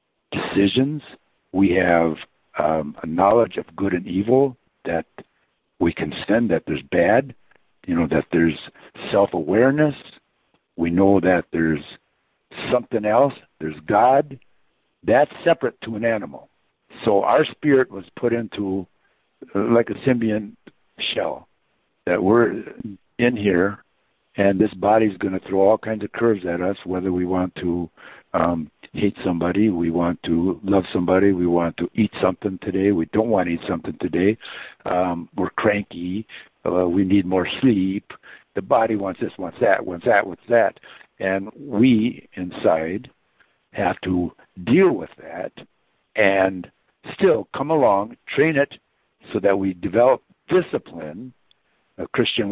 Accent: American